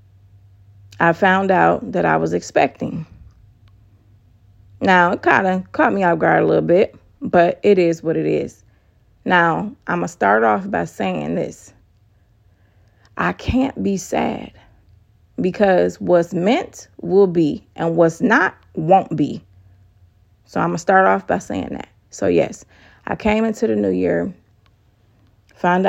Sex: female